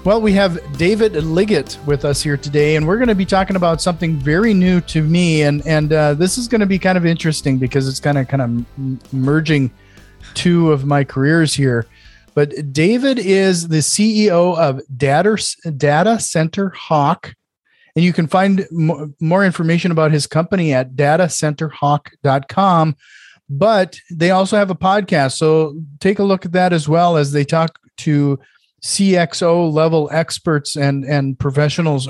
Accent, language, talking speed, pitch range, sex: American, English, 165 wpm, 145-190 Hz, male